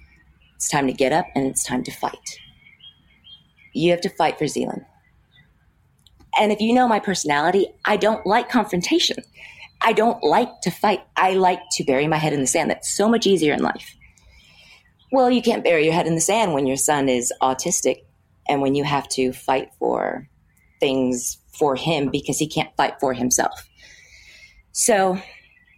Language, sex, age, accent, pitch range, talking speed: English, female, 30-49, American, 135-195 Hz, 180 wpm